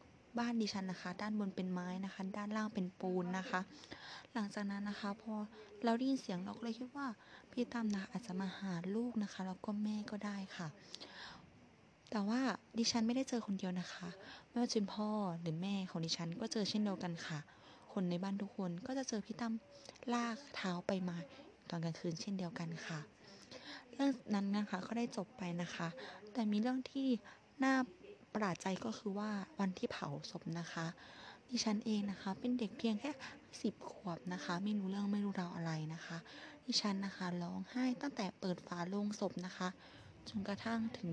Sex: female